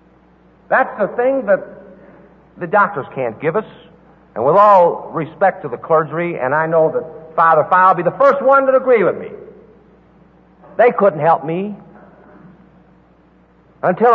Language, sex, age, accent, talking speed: English, male, 60-79, American, 155 wpm